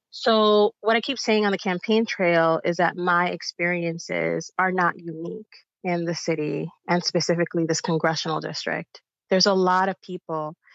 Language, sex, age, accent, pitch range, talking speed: English, female, 30-49, American, 170-200 Hz, 160 wpm